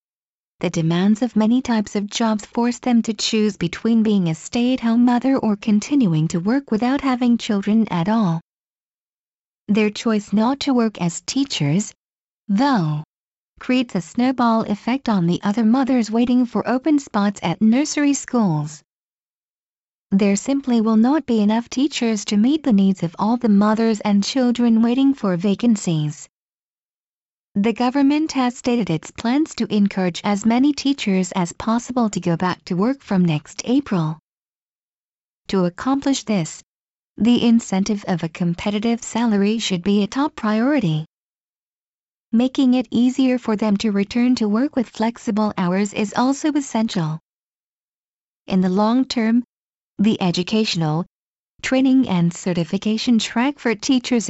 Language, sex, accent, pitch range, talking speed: English, female, American, 190-245 Hz, 145 wpm